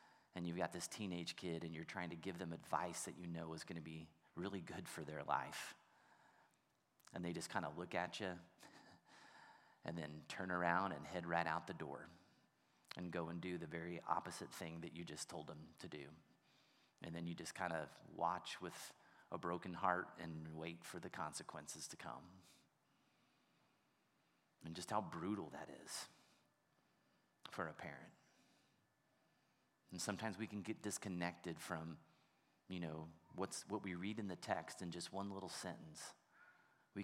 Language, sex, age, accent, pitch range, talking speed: English, male, 30-49, American, 85-95 Hz, 175 wpm